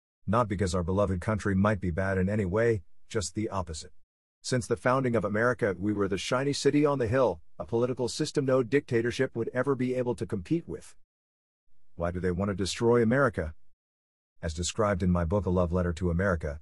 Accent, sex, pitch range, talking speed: American, male, 90-115 Hz, 200 wpm